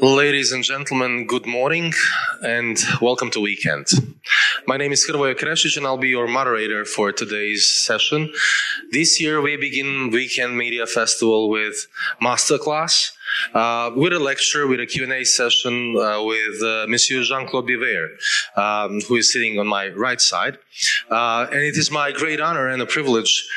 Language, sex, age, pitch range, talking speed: Croatian, male, 20-39, 115-145 Hz, 160 wpm